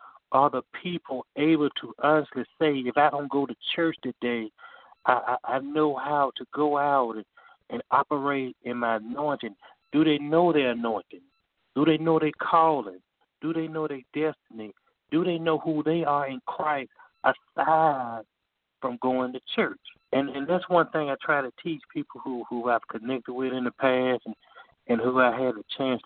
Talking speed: 185 wpm